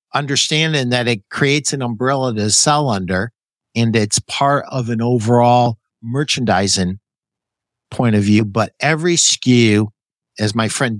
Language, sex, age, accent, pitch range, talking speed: English, male, 50-69, American, 115-150 Hz, 135 wpm